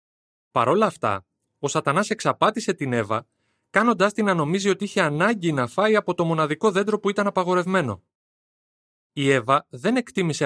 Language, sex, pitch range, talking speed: Greek, male, 120-185 Hz, 160 wpm